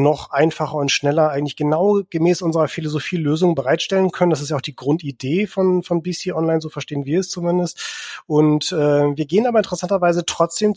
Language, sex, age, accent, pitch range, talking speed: German, male, 30-49, German, 140-170 Hz, 185 wpm